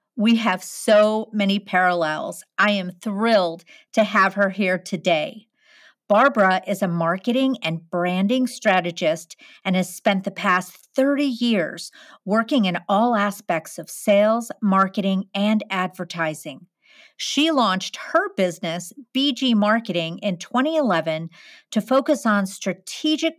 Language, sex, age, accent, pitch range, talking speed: English, female, 50-69, American, 180-240 Hz, 125 wpm